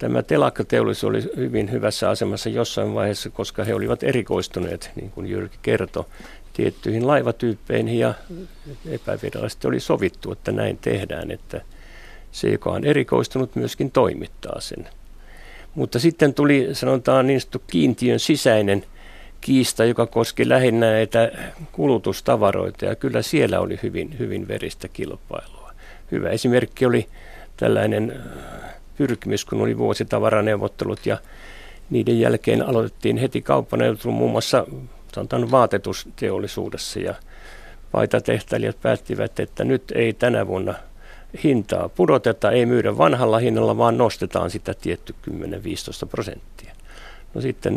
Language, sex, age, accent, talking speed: Finnish, male, 60-79, native, 115 wpm